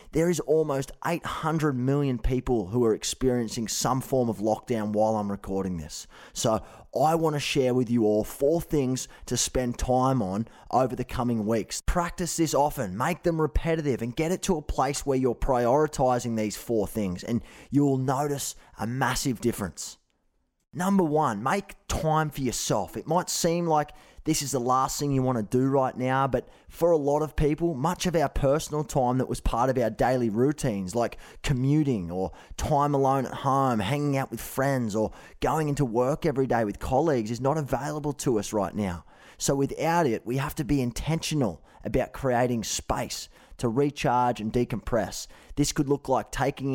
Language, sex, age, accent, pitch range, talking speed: English, male, 20-39, Australian, 115-150 Hz, 185 wpm